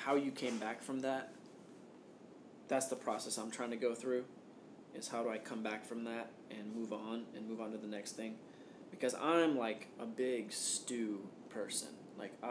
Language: English